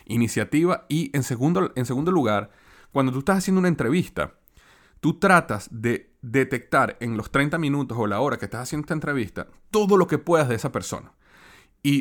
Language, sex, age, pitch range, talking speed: Spanish, male, 30-49, 120-170 Hz, 185 wpm